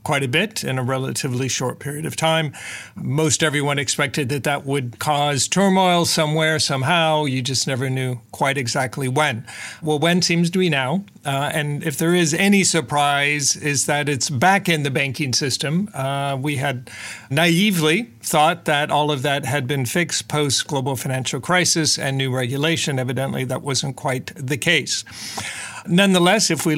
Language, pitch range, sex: English, 135-155 Hz, male